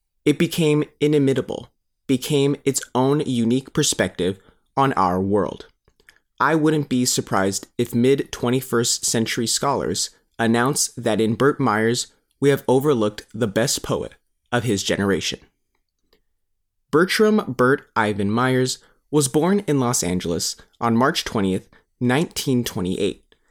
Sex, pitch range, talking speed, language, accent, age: male, 110-140 Hz, 115 wpm, English, American, 30-49